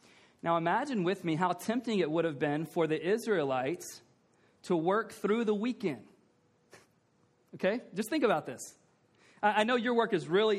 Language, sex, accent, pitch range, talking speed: English, male, American, 180-235 Hz, 165 wpm